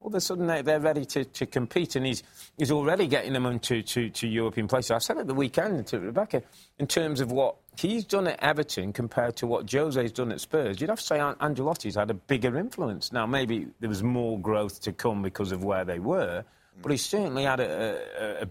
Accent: British